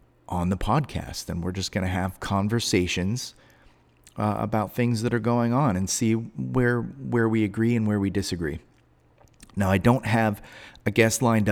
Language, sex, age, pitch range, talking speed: English, male, 30-49, 90-110 Hz, 175 wpm